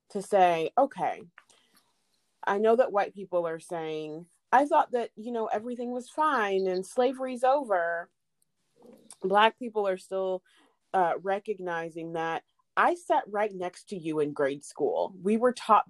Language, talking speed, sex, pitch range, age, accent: English, 150 wpm, female, 170-220 Hz, 30-49, American